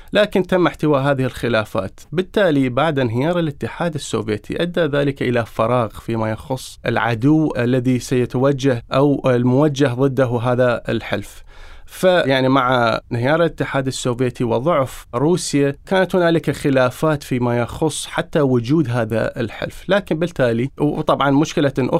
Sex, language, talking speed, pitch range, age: male, Arabic, 125 wpm, 125-160 Hz, 20-39